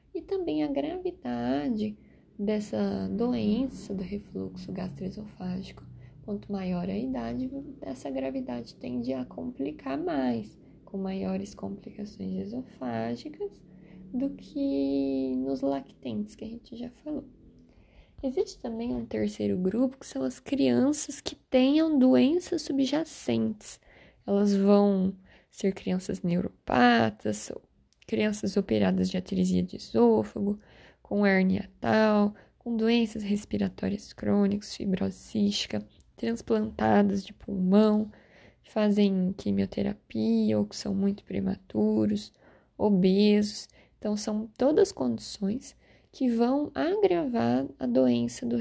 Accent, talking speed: Brazilian, 105 wpm